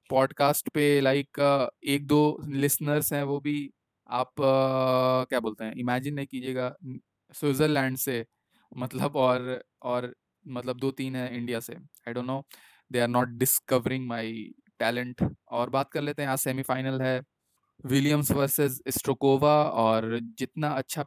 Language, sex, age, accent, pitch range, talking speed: Hindi, male, 20-39, native, 125-145 Hz, 150 wpm